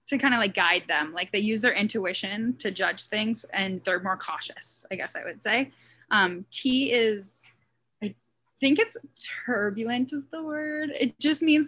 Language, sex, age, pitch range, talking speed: English, female, 10-29, 175-230 Hz, 185 wpm